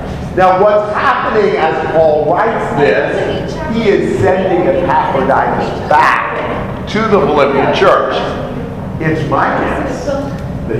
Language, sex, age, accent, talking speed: English, male, 50-69, American, 110 wpm